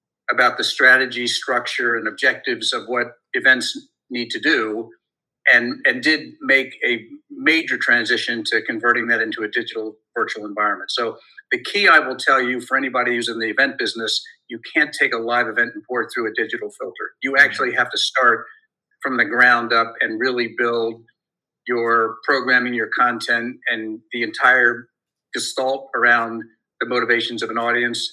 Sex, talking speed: male, 170 wpm